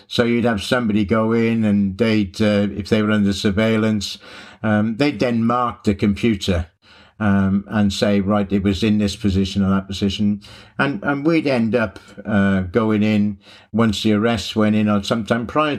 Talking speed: 180 wpm